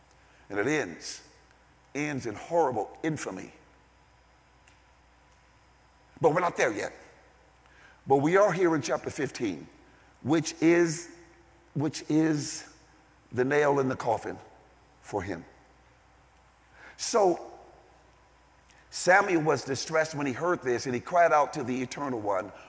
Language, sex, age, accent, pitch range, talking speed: English, male, 50-69, American, 105-150 Hz, 120 wpm